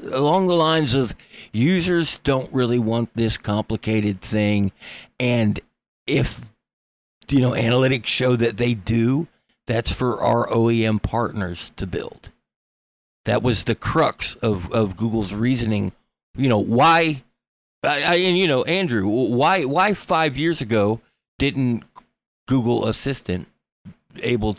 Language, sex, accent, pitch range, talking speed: English, male, American, 105-140 Hz, 125 wpm